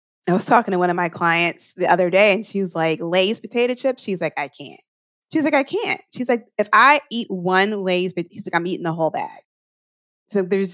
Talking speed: 235 wpm